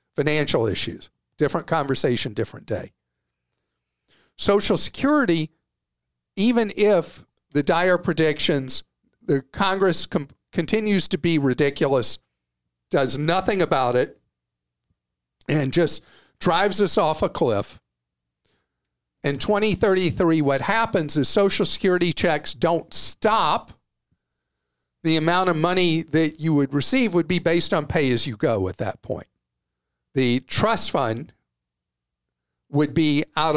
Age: 50-69